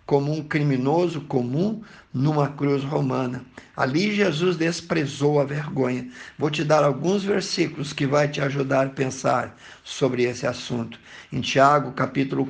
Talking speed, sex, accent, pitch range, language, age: 140 wpm, male, Brazilian, 130-150 Hz, Portuguese, 50-69